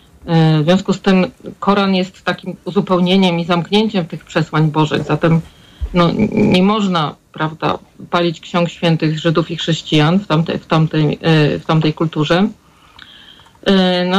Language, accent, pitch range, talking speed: Polish, native, 170-200 Hz, 135 wpm